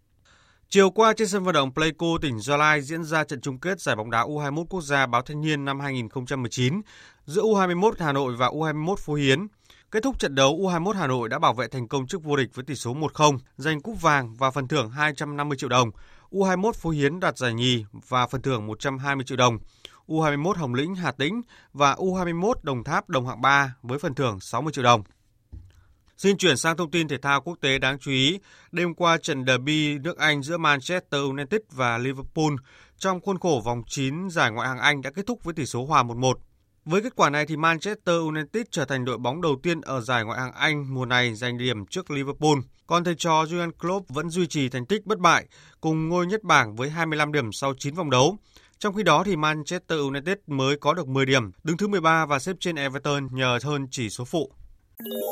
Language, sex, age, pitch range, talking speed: Vietnamese, male, 20-39, 130-170 Hz, 220 wpm